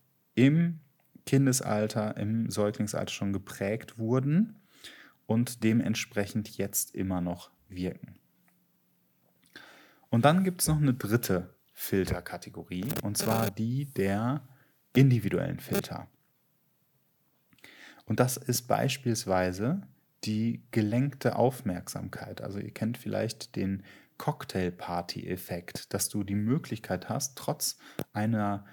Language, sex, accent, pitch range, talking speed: German, male, German, 100-130 Hz, 100 wpm